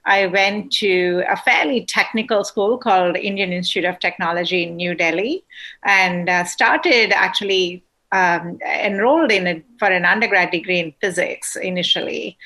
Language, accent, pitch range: English, Indian, 175-205 Hz